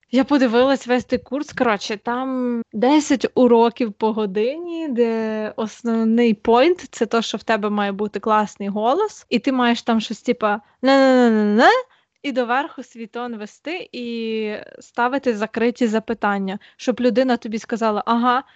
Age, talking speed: 20-39, 140 wpm